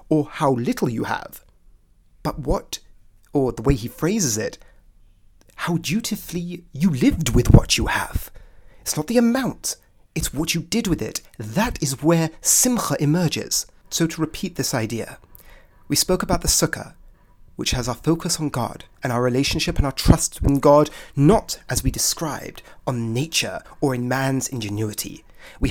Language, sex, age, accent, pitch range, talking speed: English, male, 30-49, British, 115-160 Hz, 165 wpm